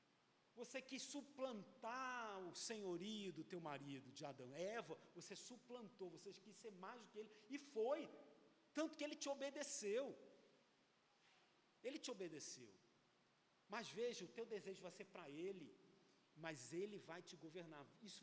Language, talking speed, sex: Portuguese, 150 wpm, male